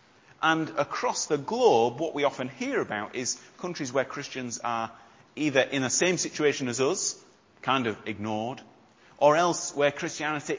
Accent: British